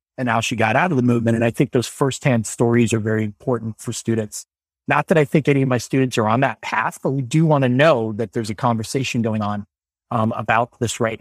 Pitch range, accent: 115-145 Hz, American